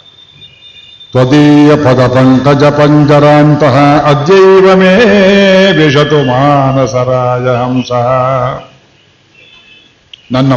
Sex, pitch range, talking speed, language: male, 125-145 Hz, 60 wpm, Kannada